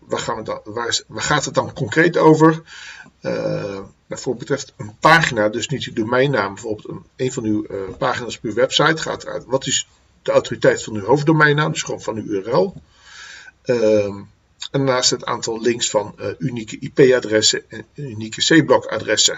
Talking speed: 185 wpm